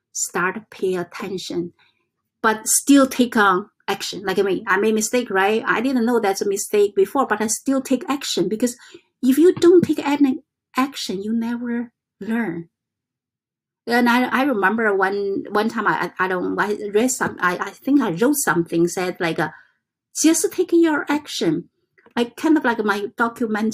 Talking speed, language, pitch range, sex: 180 wpm, English, 205-275 Hz, female